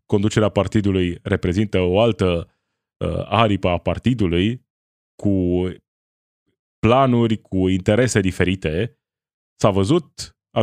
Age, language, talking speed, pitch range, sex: 20-39, Romanian, 95 wpm, 95-115 Hz, male